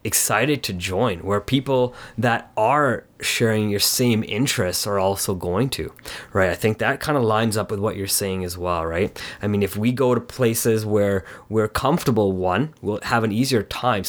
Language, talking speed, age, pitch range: English, 195 wpm, 30-49, 105-125 Hz